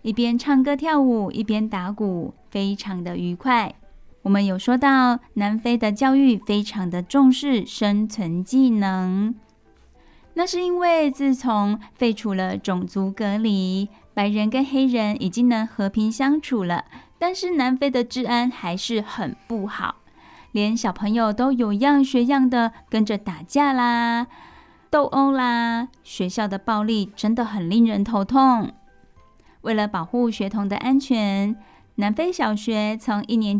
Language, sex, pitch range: Chinese, female, 205-260 Hz